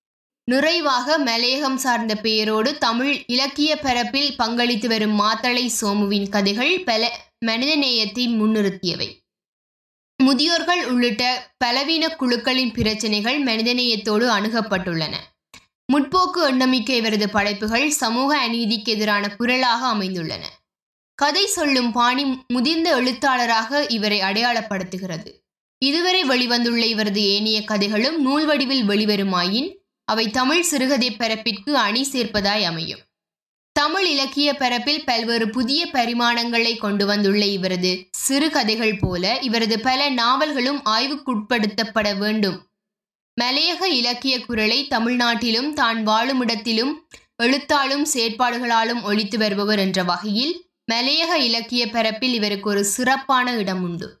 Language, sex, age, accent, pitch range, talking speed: Tamil, female, 20-39, native, 215-270 Hz, 95 wpm